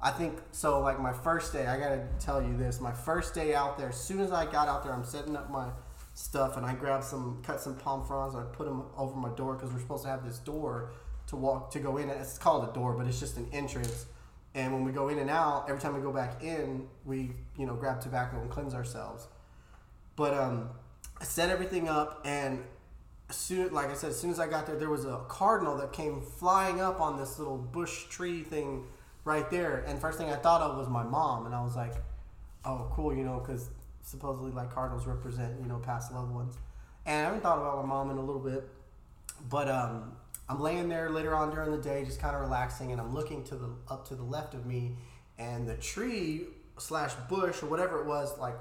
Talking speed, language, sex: 240 wpm, English, male